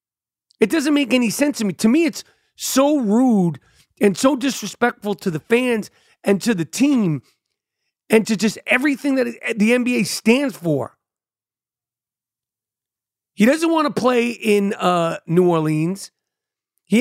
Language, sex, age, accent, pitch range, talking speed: English, male, 40-59, American, 160-245 Hz, 145 wpm